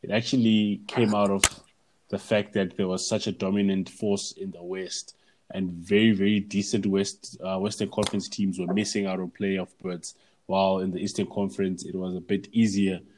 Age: 20-39